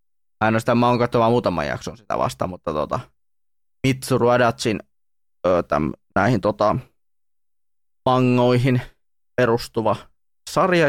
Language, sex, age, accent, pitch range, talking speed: Finnish, male, 20-39, native, 100-120 Hz, 85 wpm